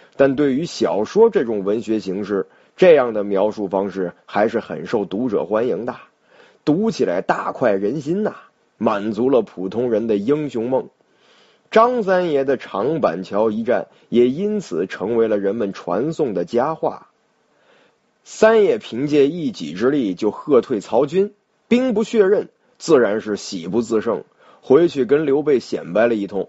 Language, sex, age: Chinese, male, 30-49